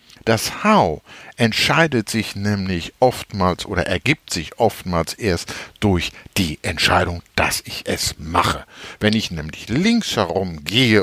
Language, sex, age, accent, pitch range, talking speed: German, male, 60-79, German, 90-135 Hz, 130 wpm